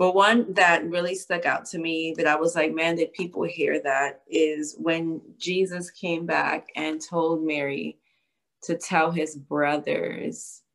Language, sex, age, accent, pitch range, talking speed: English, female, 20-39, American, 155-180 Hz, 160 wpm